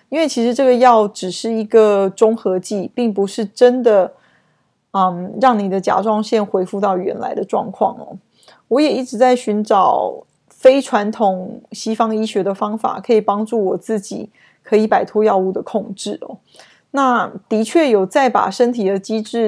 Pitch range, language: 200-245 Hz, Chinese